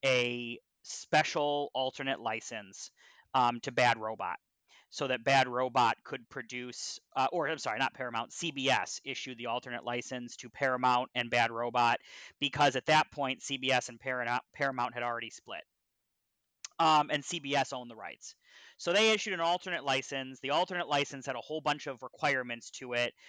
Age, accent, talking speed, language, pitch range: 30-49, American, 160 wpm, English, 120-140 Hz